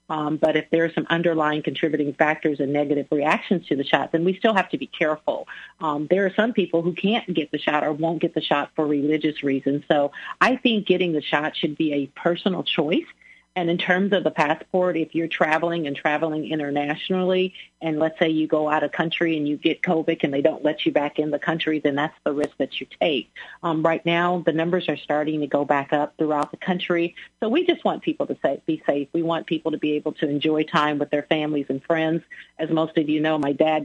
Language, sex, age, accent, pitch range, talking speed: English, female, 40-59, American, 155-180 Hz, 240 wpm